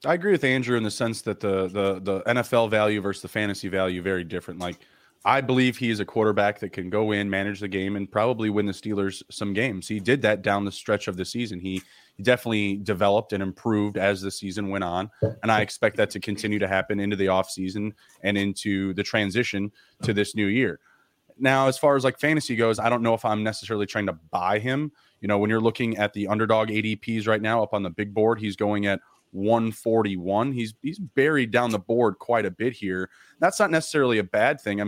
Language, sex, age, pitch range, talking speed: English, male, 20-39, 100-115 Hz, 225 wpm